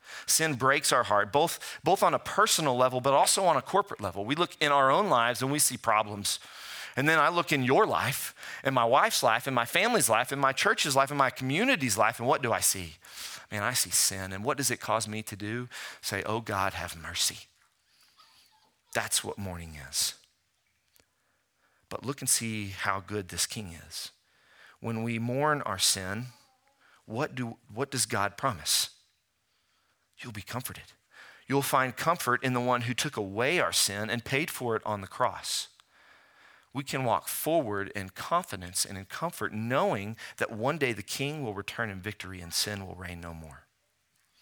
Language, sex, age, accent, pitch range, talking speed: English, male, 40-59, American, 100-140 Hz, 190 wpm